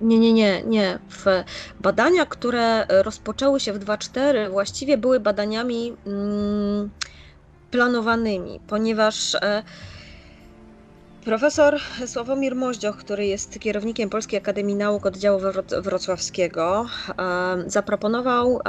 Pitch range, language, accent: 195-225 Hz, Polish, native